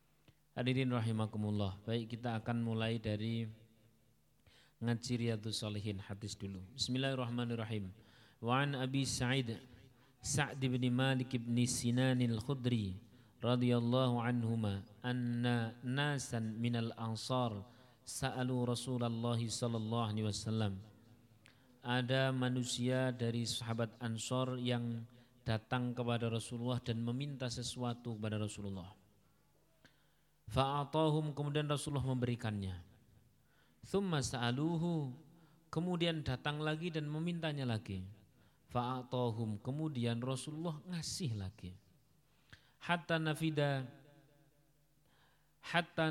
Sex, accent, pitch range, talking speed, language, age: male, native, 115-140 Hz, 85 wpm, Indonesian, 40-59